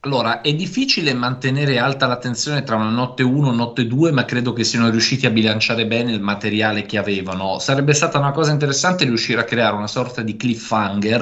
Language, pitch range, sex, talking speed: Italian, 105-125 Hz, male, 205 wpm